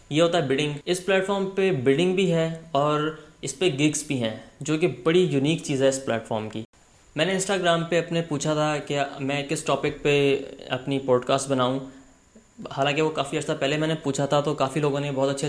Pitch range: 130-155 Hz